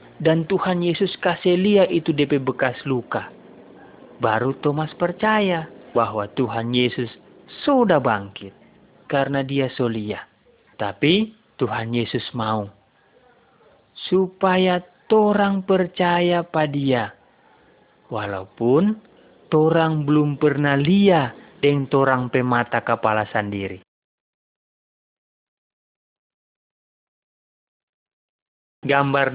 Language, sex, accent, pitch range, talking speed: Indonesian, male, native, 125-180 Hz, 80 wpm